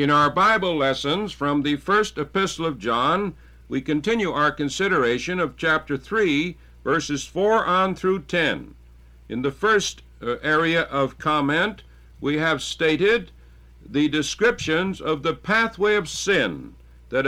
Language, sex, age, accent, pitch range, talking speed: English, male, 60-79, American, 140-200 Hz, 140 wpm